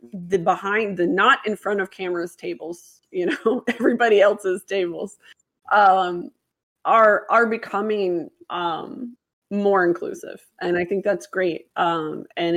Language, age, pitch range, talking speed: English, 20-39, 175-225 Hz, 135 wpm